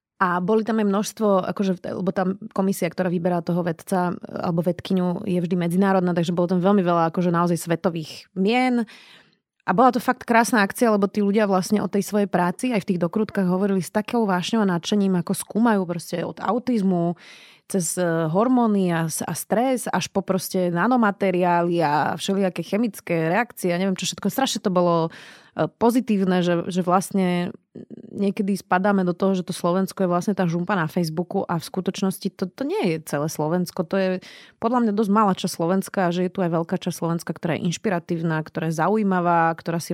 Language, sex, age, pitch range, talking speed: Slovak, female, 20-39, 175-205 Hz, 185 wpm